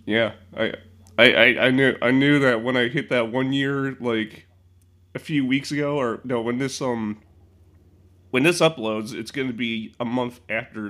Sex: male